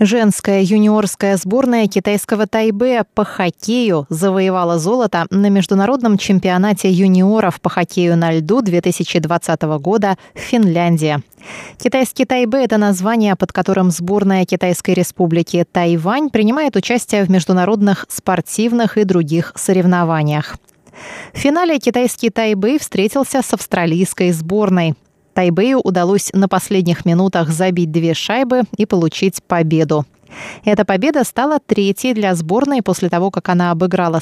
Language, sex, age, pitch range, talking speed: Russian, female, 20-39, 170-220 Hz, 120 wpm